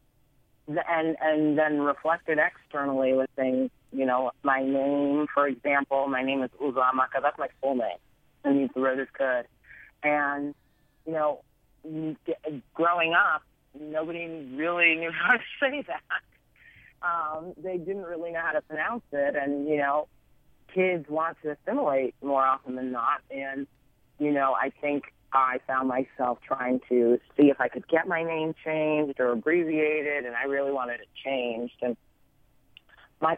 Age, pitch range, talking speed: 30-49, 130-155 Hz, 155 wpm